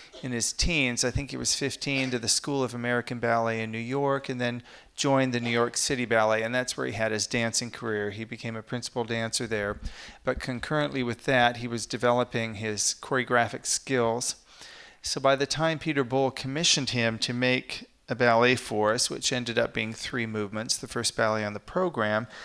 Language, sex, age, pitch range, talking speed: English, male, 40-59, 110-130 Hz, 200 wpm